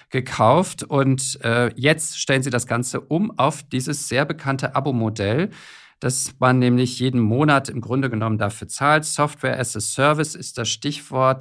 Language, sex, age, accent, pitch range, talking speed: German, male, 50-69, German, 110-140 Hz, 165 wpm